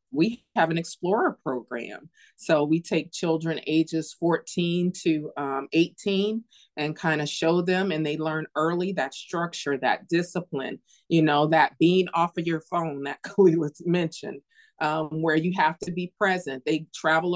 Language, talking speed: English, 160 wpm